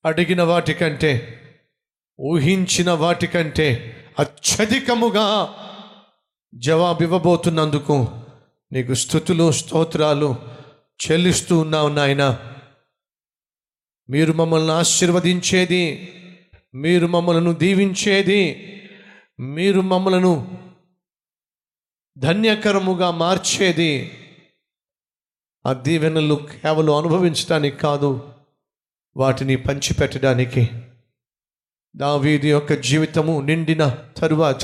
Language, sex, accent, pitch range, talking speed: Telugu, male, native, 145-180 Hz, 45 wpm